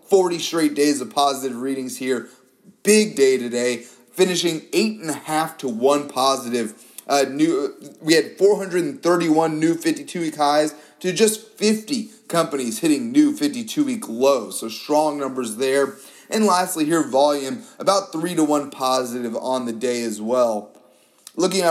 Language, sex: English, male